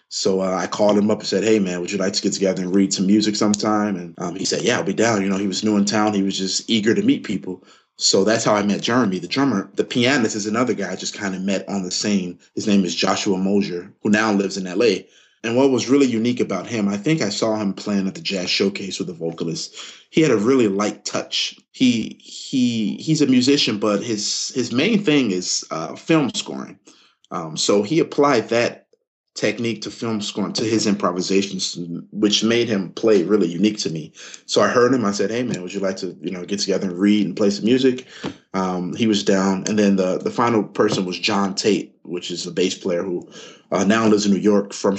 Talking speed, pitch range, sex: 245 wpm, 95-110 Hz, male